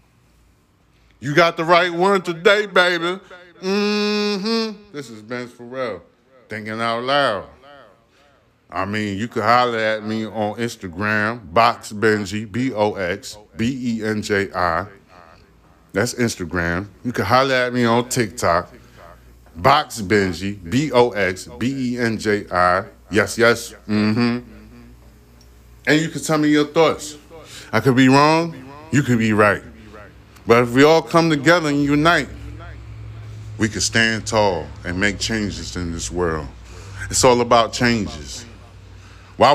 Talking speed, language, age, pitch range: 125 wpm, English, 30-49, 105-155 Hz